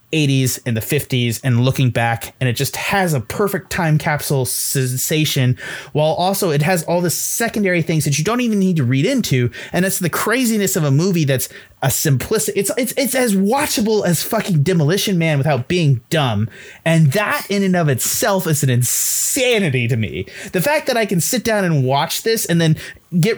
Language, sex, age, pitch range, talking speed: English, male, 30-49, 130-190 Hz, 200 wpm